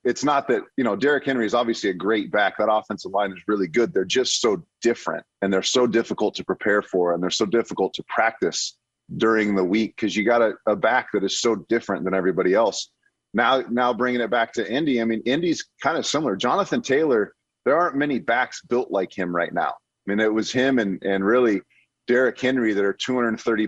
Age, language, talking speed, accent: 30-49, English, 225 wpm, American